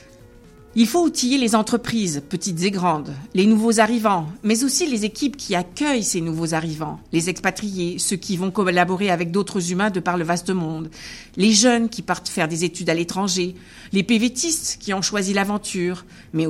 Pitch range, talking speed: 170-220 Hz, 180 wpm